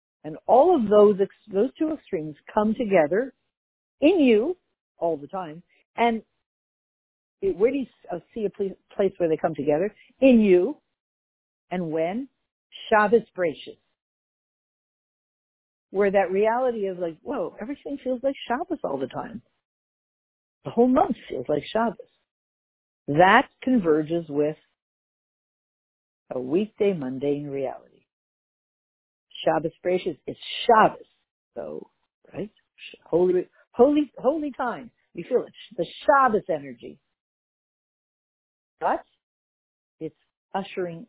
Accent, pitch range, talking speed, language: American, 165-260 Hz, 110 wpm, English